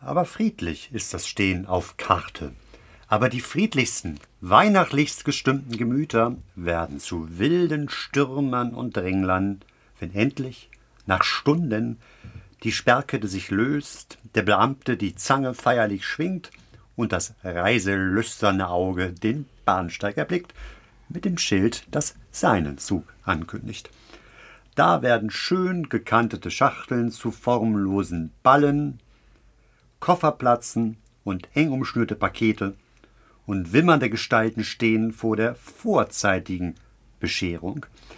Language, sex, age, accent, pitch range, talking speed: German, male, 50-69, German, 100-140 Hz, 105 wpm